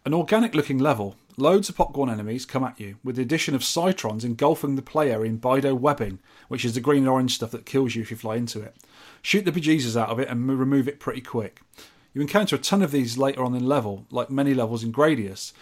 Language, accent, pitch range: English, British, 120-150 Hz